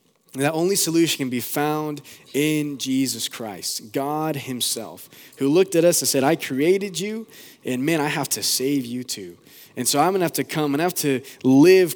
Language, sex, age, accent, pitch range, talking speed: English, male, 20-39, American, 125-165 Hz, 205 wpm